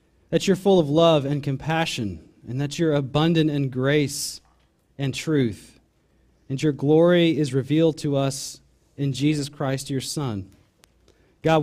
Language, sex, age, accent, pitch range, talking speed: English, male, 30-49, American, 135-165 Hz, 145 wpm